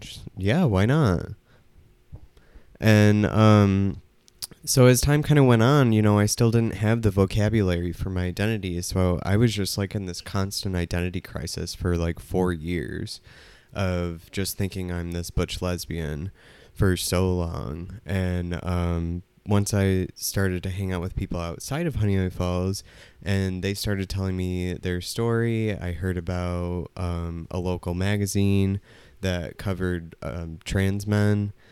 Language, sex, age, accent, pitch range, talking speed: English, male, 20-39, American, 90-100 Hz, 150 wpm